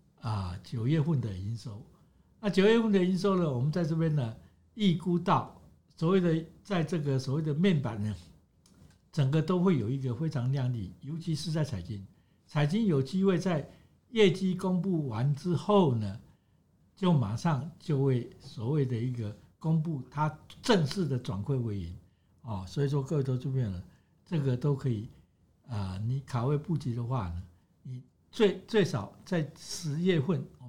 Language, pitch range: Chinese, 125-175 Hz